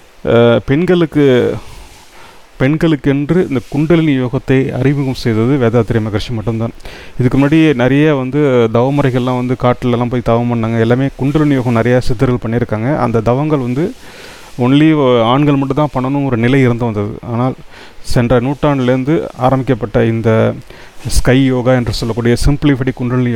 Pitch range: 120-145 Hz